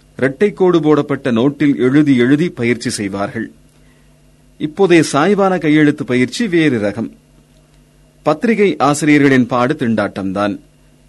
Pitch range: 105-150 Hz